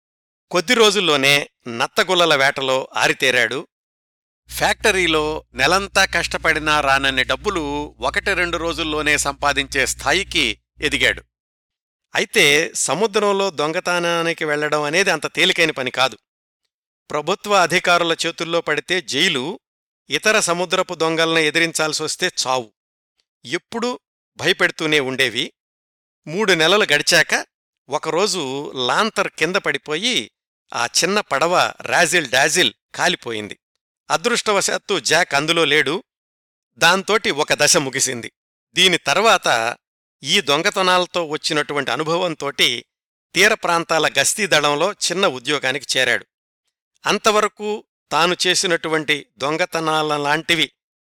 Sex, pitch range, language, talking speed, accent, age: male, 145-180 Hz, Telugu, 90 wpm, native, 50-69